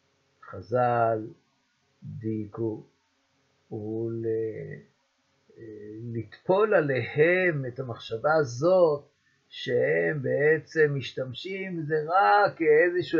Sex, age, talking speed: male, 50-69, 60 wpm